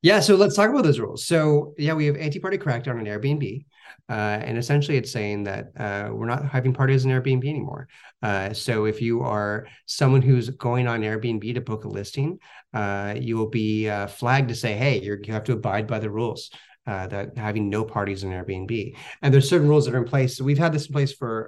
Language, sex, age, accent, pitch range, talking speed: English, male, 30-49, American, 105-135 Hz, 225 wpm